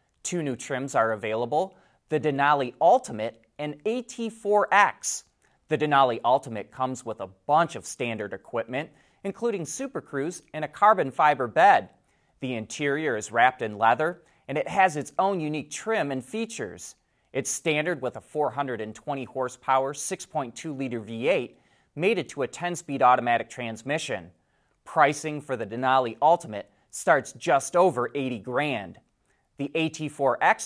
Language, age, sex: English, 30-49, male